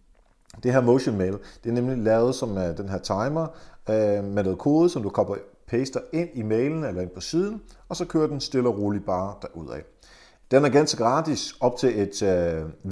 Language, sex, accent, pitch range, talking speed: Danish, male, native, 95-135 Hz, 205 wpm